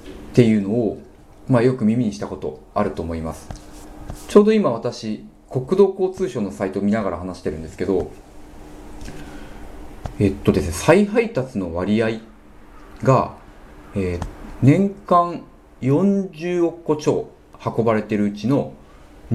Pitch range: 75-130 Hz